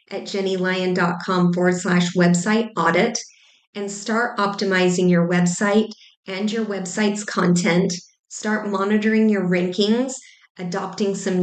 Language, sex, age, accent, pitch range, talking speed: English, female, 30-49, American, 185-215 Hz, 110 wpm